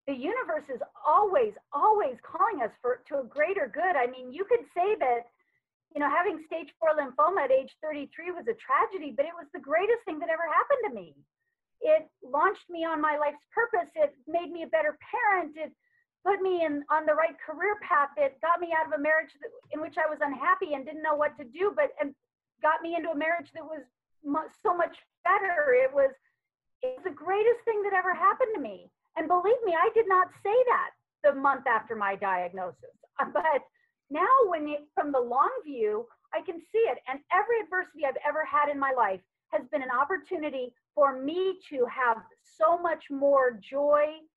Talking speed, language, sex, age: 205 wpm, English, female, 40-59